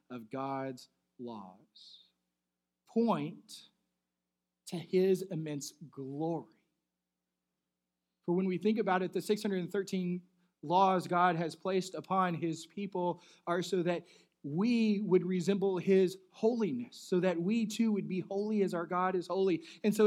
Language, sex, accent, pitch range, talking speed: English, male, American, 125-215 Hz, 135 wpm